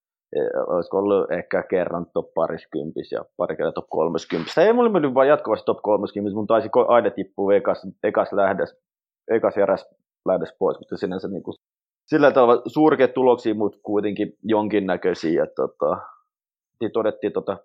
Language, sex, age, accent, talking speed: Finnish, male, 30-49, native, 135 wpm